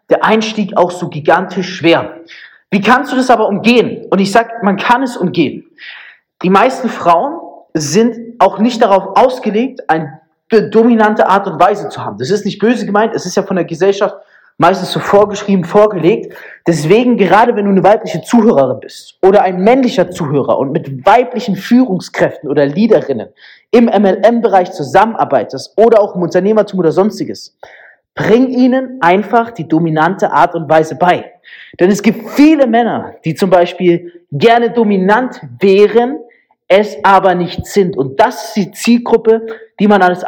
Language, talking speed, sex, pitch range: German, 160 wpm, male, 175-225 Hz